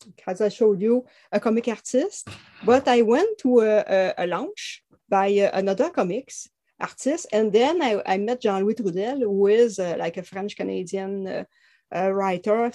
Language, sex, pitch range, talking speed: English, female, 195-240 Hz, 160 wpm